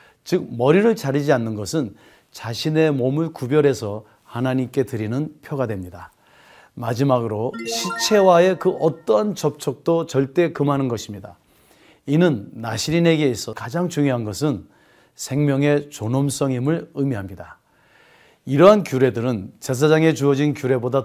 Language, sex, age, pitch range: Korean, male, 40-59, 120-160 Hz